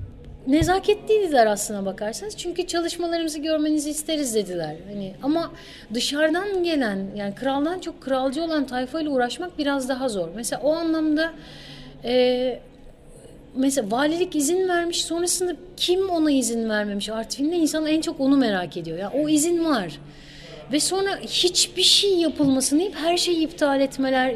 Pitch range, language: 240-310 Hz, Turkish